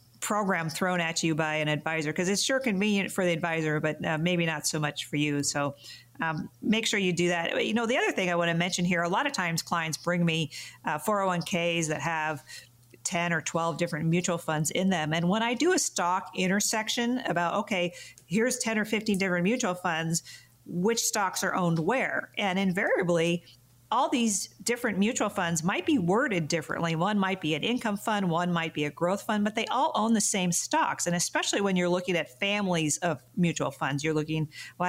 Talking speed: 210 wpm